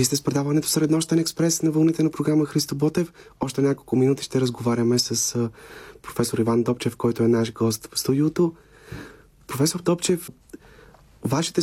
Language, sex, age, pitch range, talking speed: Bulgarian, male, 30-49, 110-140 Hz, 155 wpm